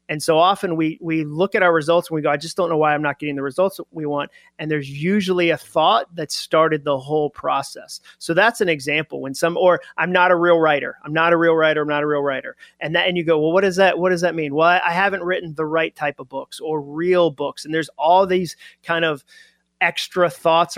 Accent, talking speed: American, 260 wpm